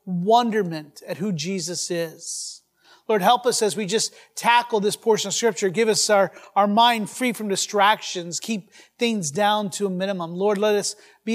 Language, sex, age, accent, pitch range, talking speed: English, male, 30-49, American, 195-235 Hz, 180 wpm